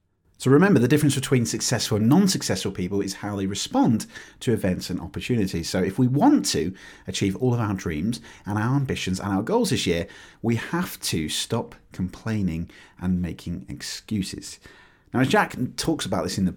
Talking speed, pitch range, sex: 185 wpm, 95-120 Hz, male